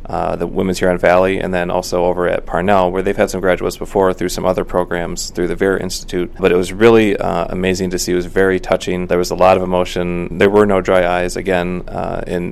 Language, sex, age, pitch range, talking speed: English, male, 20-39, 90-95 Hz, 245 wpm